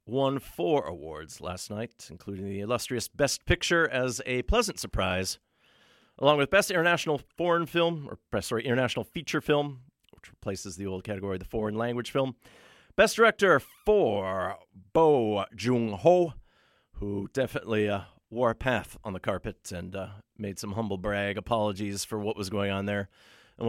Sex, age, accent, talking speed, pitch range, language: male, 40-59, American, 160 wpm, 100-135 Hz, English